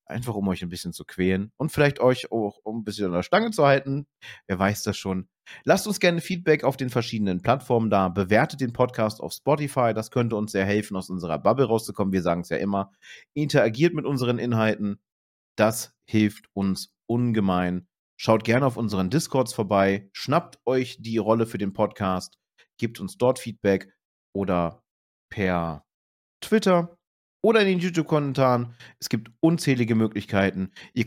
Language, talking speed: German, 170 wpm